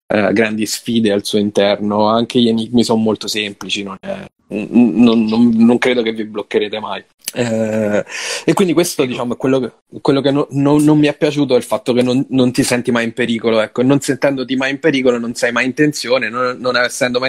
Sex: male